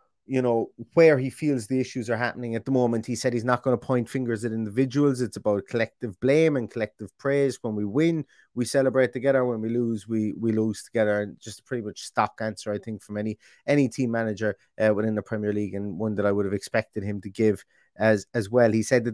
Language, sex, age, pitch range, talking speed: English, male, 30-49, 110-130 Hz, 240 wpm